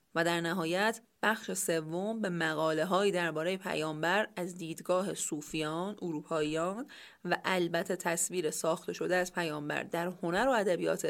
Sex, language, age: female, English, 30-49